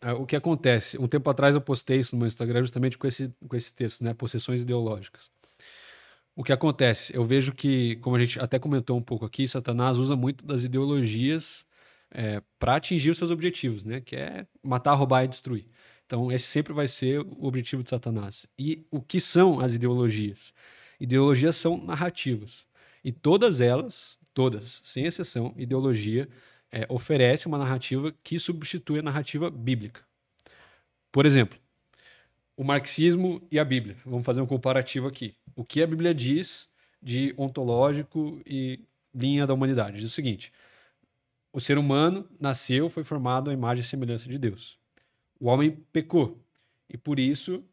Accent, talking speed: Brazilian, 160 wpm